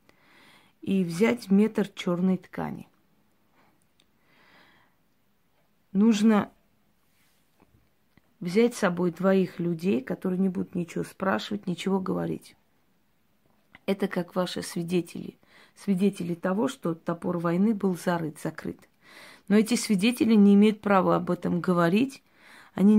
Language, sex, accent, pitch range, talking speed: Russian, female, native, 175-210 Hz, 105 wpm